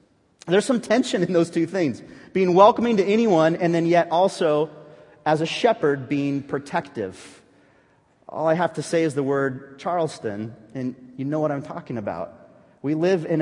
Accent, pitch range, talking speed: American, 135-175 Hz, 175 wpm